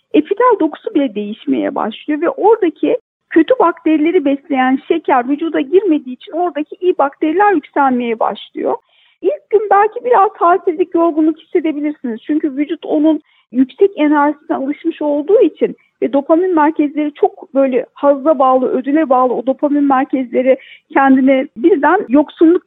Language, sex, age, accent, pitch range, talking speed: Turkish, female, 50-69, native, 280-360 Hz, 130 wpm